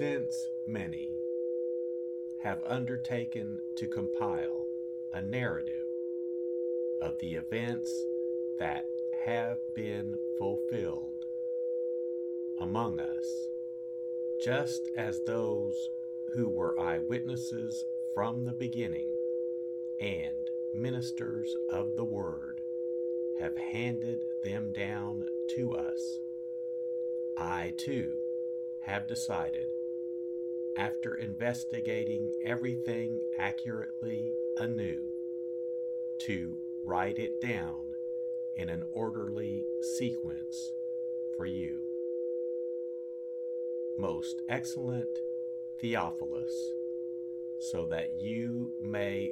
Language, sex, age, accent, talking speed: English, male, 50-69, American, 75 wpm